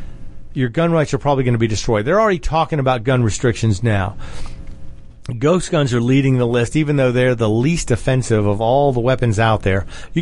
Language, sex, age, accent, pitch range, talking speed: English, male, 40-59, American, 115-145 Hz, 205 wpm